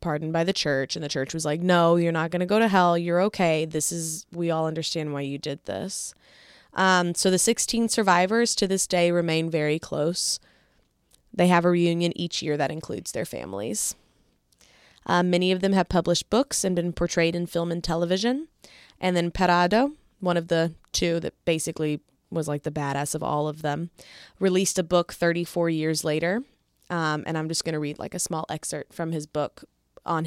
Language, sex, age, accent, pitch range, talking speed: English, female, 20-39, American, 160-180 Hz, 200 wpm